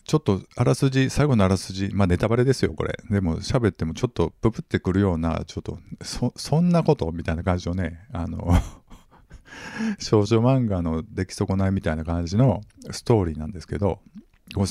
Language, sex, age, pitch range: Japanese, male, 50-69, 85-115 Hz